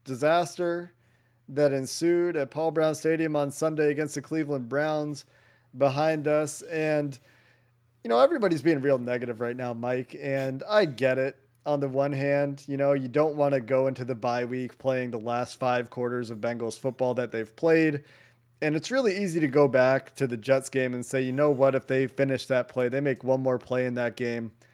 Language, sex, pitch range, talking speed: English, male, 125-150 Hz, 205 wpm